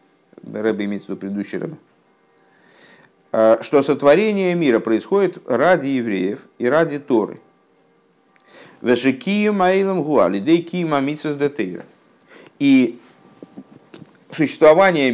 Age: 50-69